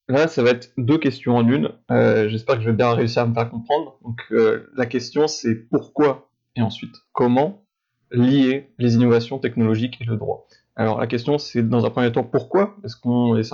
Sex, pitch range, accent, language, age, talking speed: male, 115-130 Hz, French, French, 20-39, 210 wpm